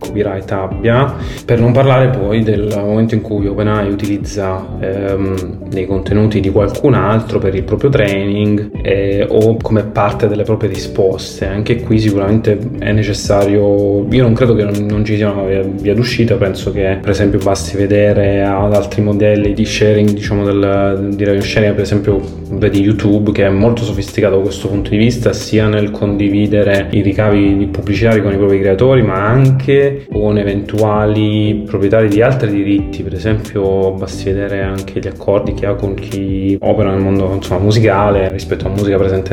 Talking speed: 170 wpm